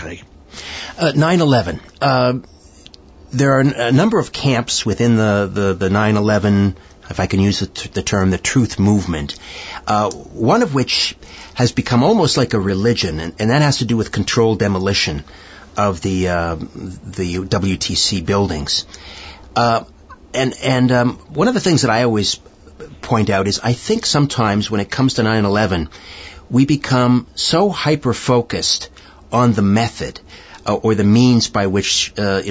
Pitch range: 90-120 Hz